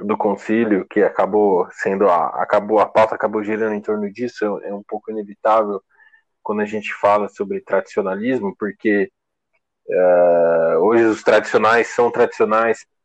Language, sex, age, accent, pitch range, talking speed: Portuguese, male, 20-39, Brazilian, 105-120 Hz, 145 wpm